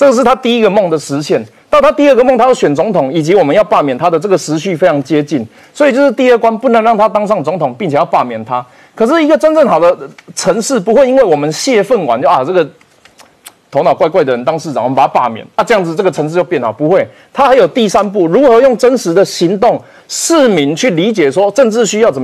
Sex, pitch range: male, 165-255 Hz